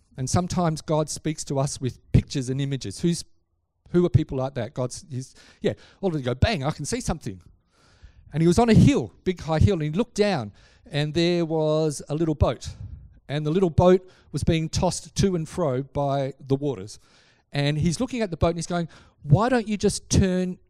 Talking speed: 210 wpm